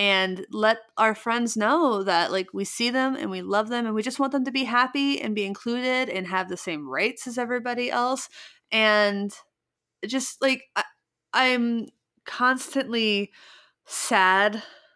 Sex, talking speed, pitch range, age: female, 155 wpm, 180-240 Hz, 20-39